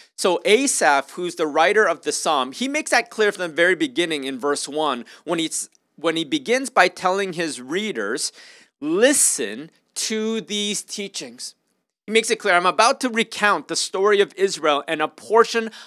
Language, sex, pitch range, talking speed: English, male, 170-235 Hz, 180 wpm